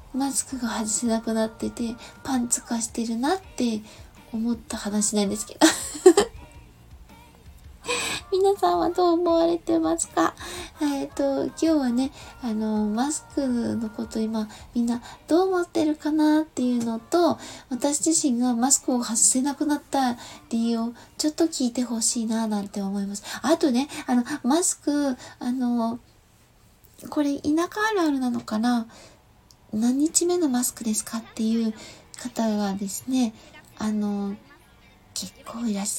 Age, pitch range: 20-39, 230-310 Hz